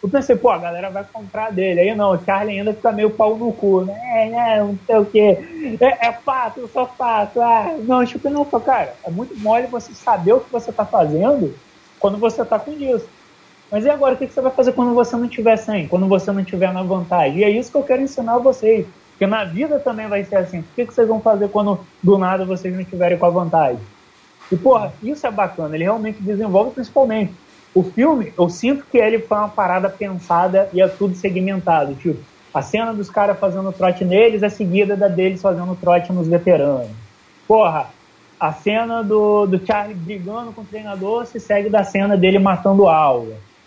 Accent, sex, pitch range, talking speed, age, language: Brazilian, male, 190-230 Hz, 215 wpm, 20-39, Portuguese